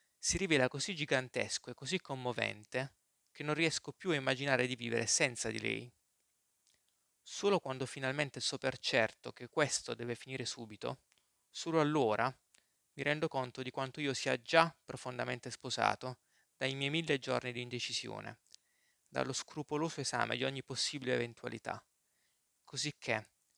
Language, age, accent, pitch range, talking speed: Italian, 20-39, native, 125-145 Hz, 140 wpm